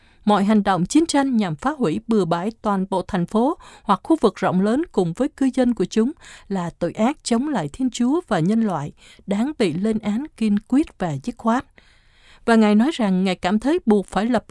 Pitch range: 190-260 Hz